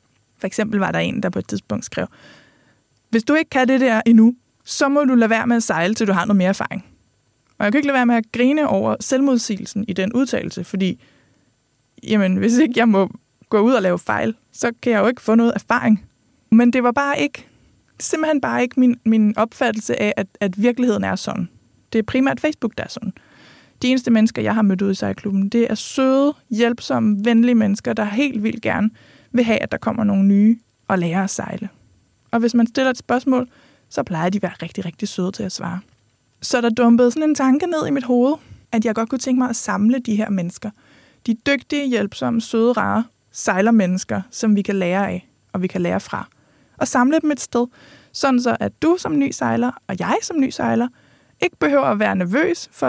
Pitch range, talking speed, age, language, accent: 200-255 Hz, 220 wpm, 20-39, Danish, native